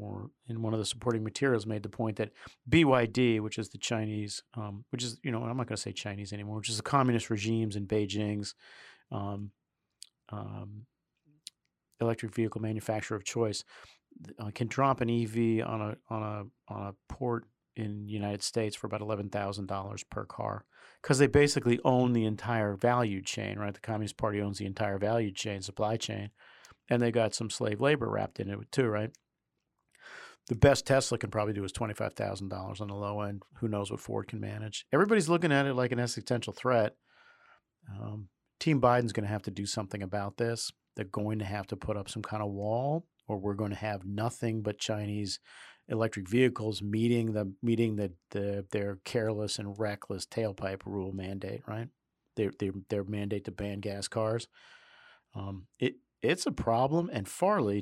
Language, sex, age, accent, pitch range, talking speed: English, male, 40-59, American, 105-120 Hz, 190 wpm